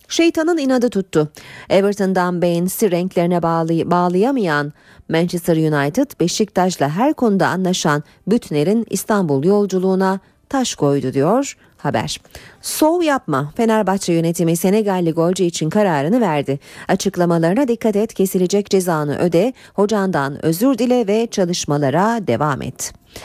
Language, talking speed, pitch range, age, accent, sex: Turkish, 110 wpm, 165-215 Hz, 40-59, native, female